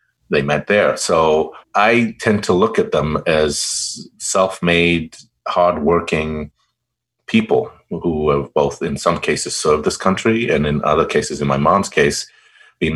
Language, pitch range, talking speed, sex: English, 70-105 Hz, 155 wpm, male